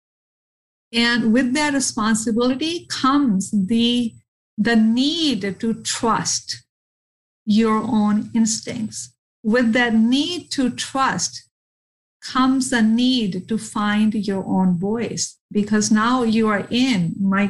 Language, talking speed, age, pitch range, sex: English, 110 wpm, 50-69, 210-255 Hz, female